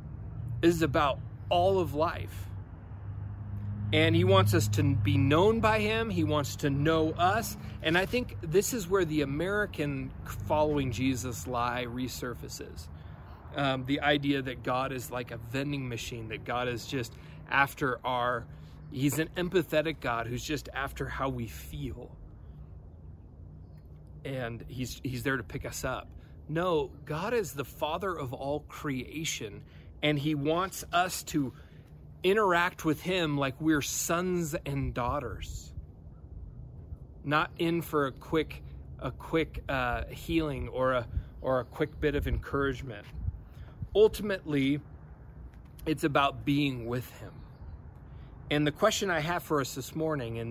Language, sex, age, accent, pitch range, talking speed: English, male, 30-49, American, 110-155 Hz, 140 wpm